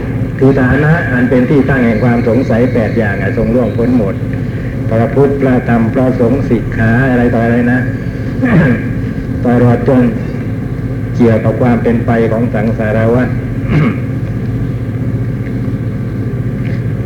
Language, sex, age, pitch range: Thai, male, 60-79, 120-130 Hz